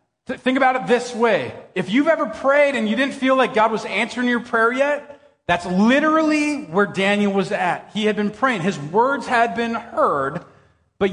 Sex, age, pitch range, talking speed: male, 40-59, 155-225 Hz, 195 wpm